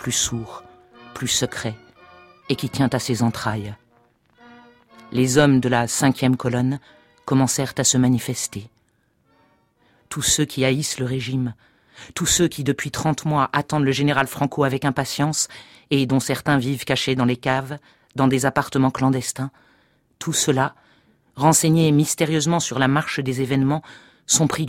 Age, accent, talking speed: 50-69, French, 150 wpm